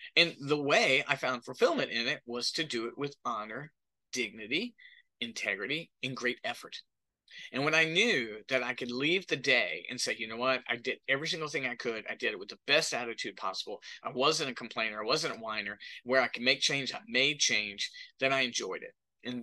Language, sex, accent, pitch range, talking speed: English, male, American, 125-185 Hz, 215 wpm